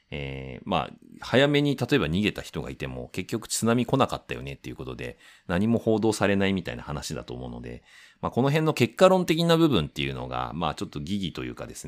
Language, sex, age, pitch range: Japanese, male, 30-49, 70-110 Hz